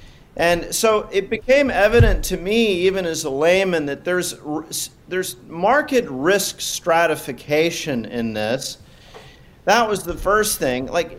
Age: 40-59